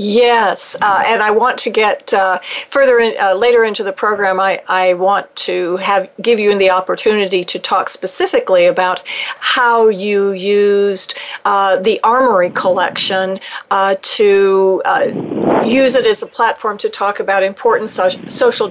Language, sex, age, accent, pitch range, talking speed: English, female, 50-69, American, 190-235 Hz, 150 wpm